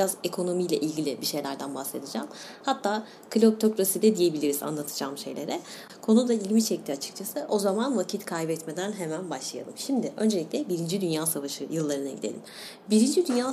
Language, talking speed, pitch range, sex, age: Turkish, 140 wpm, 165-215 Hz, female, 30-49